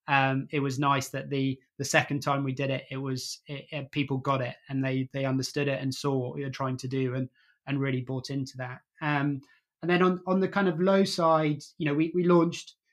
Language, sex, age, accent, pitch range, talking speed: English, male, 20-39, British, 135-150 Hz, 245 wpm